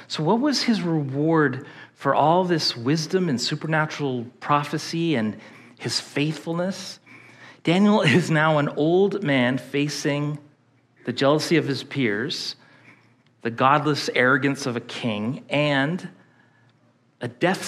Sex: male